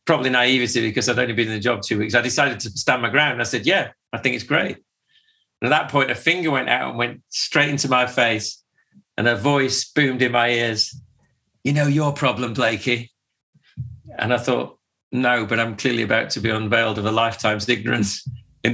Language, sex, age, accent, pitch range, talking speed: English, male, 40-59, British, 115-135 Hz, 215 wpm